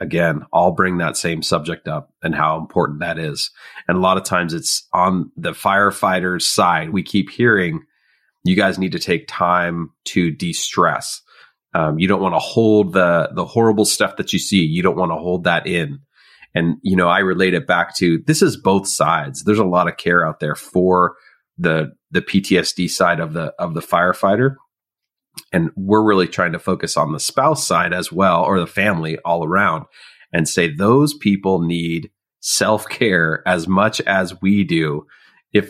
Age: 30-49